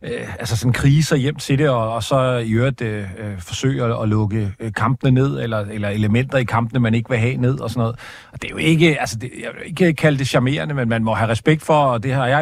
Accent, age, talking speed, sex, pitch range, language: native, 40-59, 260 wpm, male, 115-145 Hz, Danish